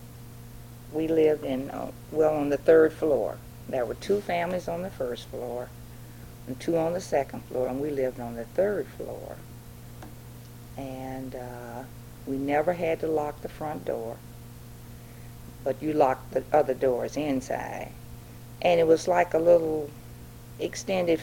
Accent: American